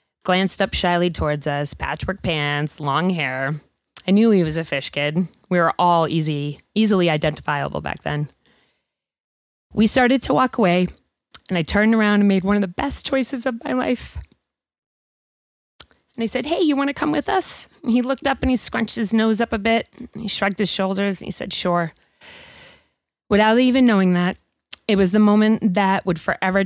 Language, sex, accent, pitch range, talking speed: English, female, American, 175-225 Hz, 190 wpm